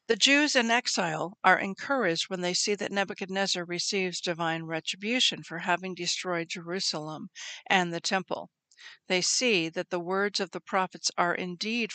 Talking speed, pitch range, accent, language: 155 wpm, 175-230 Hz, American, English